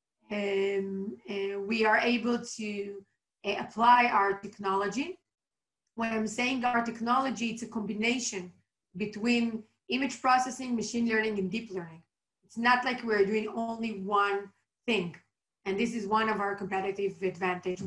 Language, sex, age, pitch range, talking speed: English, female, 30-49, 200-235 Hz, 140 wpm